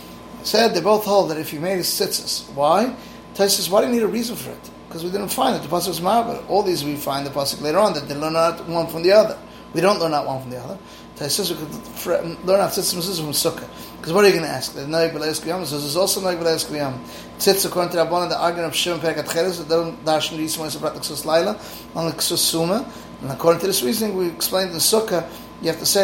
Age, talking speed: 30-49, 260 wpm